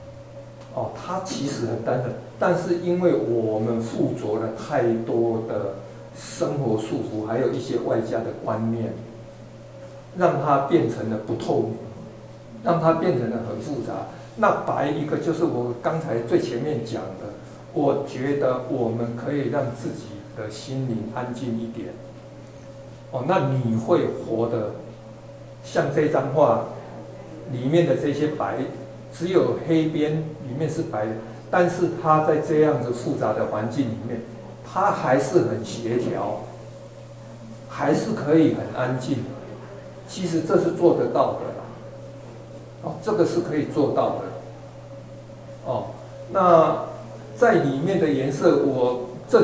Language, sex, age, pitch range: Chinese, male, 60-79, 115-155 Hz